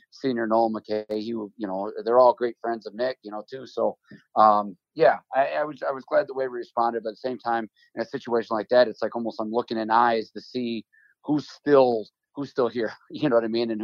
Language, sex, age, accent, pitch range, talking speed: English, male, 30-49, American, 105-120 Hz, 245 wpm